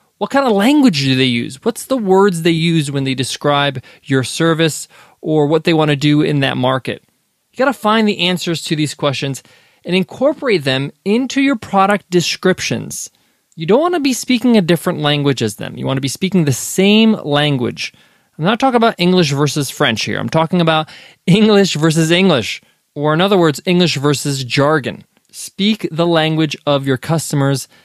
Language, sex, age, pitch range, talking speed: English, male, 20-39, 145-200 Hz, 190 wpm